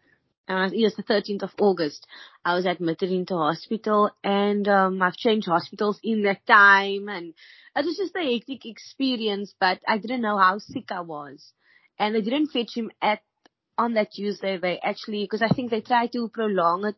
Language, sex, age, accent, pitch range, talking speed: English, female, 20-39, Indian, 190-230 Hz, 190 wpm